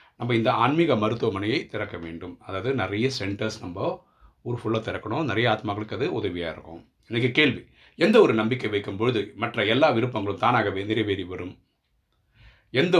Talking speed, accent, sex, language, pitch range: 150 wpm, native, male, Tamil, 100-115 Hz